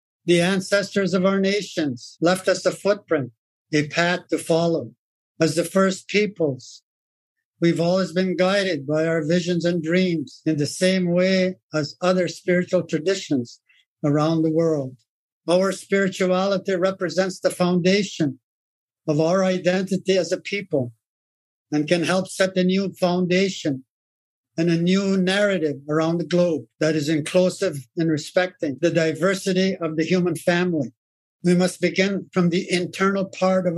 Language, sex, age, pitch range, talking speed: English, male, 60-79, 160-185 Hz, 145 wpm